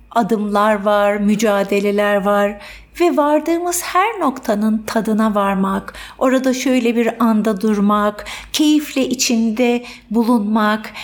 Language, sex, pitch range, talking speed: Turkish, female, 210-270 Hz, 100 wpm